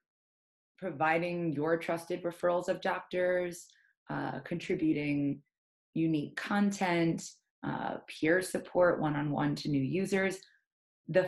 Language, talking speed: English, 95 wpm